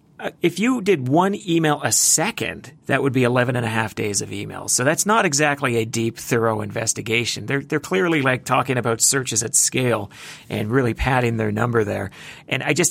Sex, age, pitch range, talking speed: male, 40-59, 115-150 Hz, 200 wpm